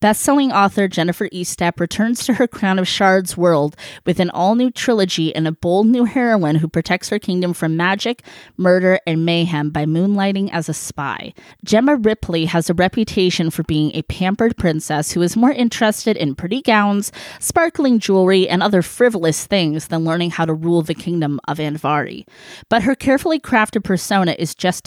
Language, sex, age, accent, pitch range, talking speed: English, female, 20-39, American, 165-215 Hz, 175 wpm